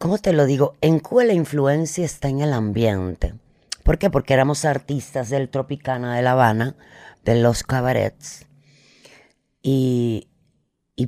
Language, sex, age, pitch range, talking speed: Spanish, female, 30-49, 115-140 Hz, 145 wpm